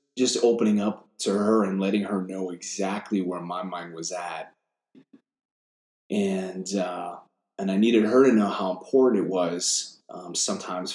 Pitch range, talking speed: 90-115 Hz, 160 wpm